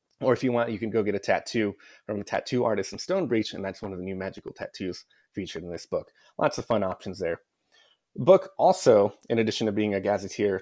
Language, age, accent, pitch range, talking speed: English, 30-49, American, 95-120 Hz, 235 wpm